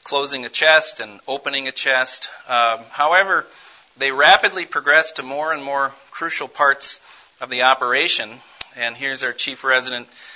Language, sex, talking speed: English, male, 150 wpm